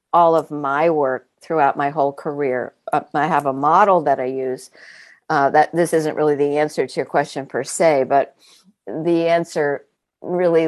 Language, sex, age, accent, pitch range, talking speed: English, female, 50-69, American, 145-175 Hz, 180 wpm